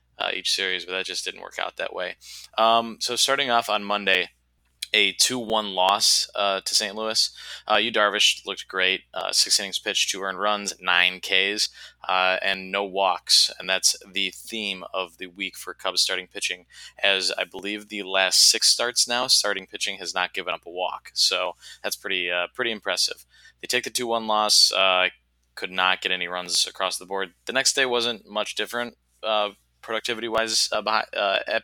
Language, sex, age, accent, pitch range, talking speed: English, male, 20-39, American, 95-110 Hz, 190 wpm